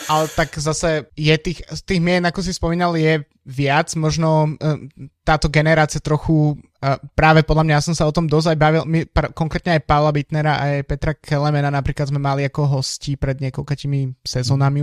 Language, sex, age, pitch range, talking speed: Slovak, male, 20-39, 140-155 Hz, 180 wpm